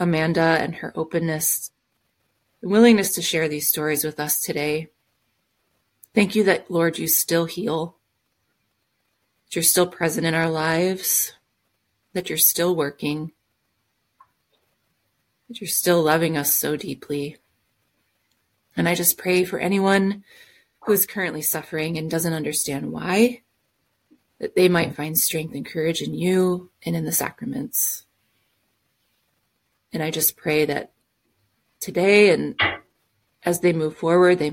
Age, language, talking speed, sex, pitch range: 30-49, English, 135 wpm, female, 140-180 Hz